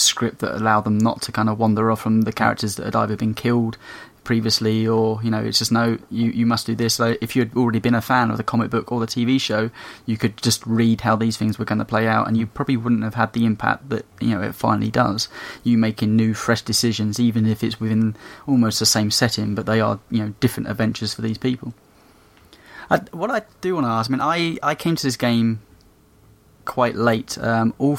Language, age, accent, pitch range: English, 20-39, British, 110-125 Hz